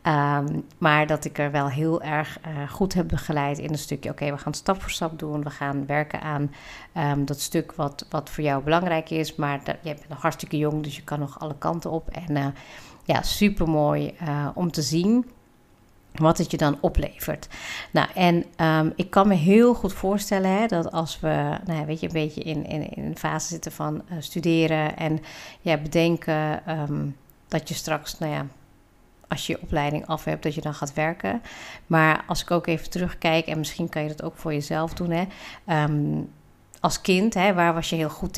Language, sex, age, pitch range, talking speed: Dutch, female, 50-69, 150-170 Hz, 210 wpm